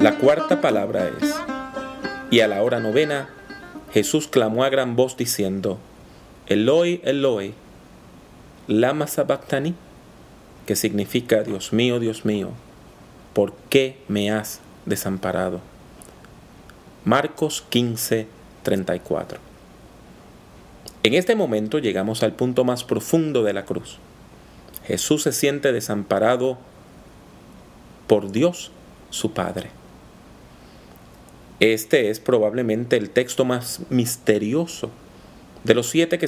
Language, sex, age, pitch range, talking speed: English, male, 40-59, 105-145 Hz, 105 wpm